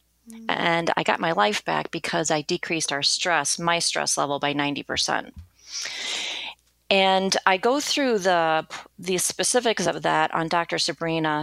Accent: American